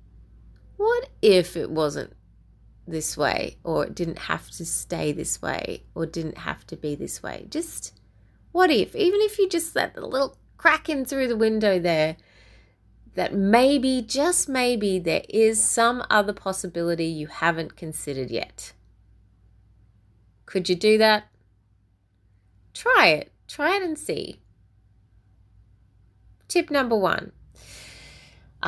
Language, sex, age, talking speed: English, female, 30-49, 130 wpm